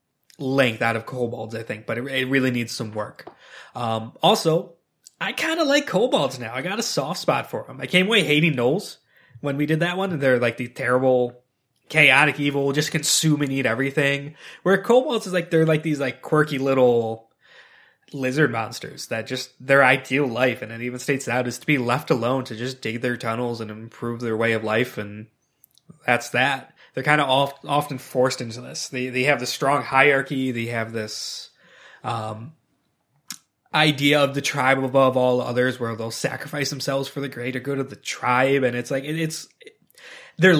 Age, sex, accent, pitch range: 20-39, male, American, 120-145 Hz